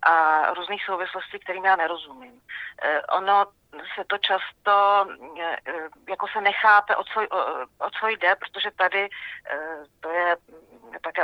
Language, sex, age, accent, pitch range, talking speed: Czech, female, 40-59, native, 165-185 Hz, 105 wpm